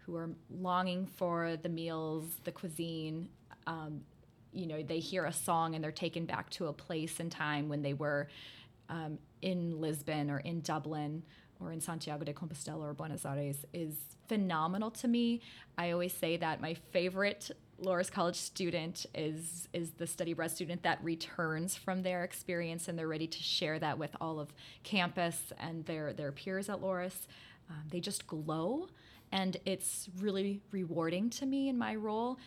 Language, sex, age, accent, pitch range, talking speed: English, female, 20-39, American, 155-185 Hz, 175 wpm